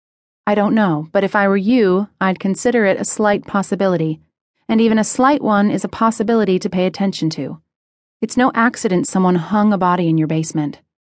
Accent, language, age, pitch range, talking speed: American, English, 30-49, 170-225 Hz, 195 wpm